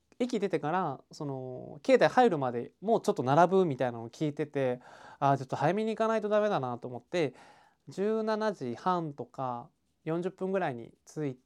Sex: male